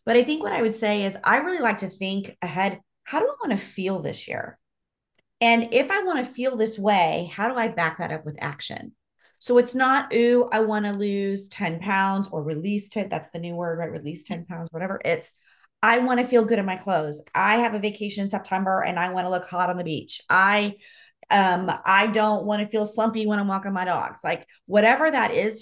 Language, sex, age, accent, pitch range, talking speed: English, female, 30-49, American, 175-220 Hz, 235 wpm